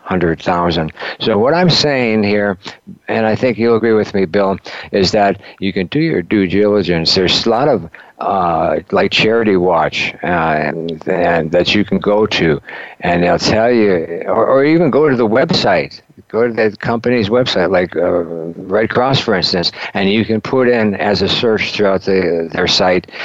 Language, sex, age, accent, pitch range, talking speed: English, male, 60-79, American, 90-110 Hz, 185 wpm